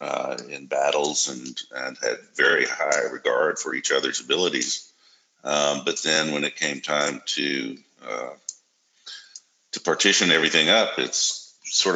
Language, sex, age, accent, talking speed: English, male, 50-69, American, 140 wpm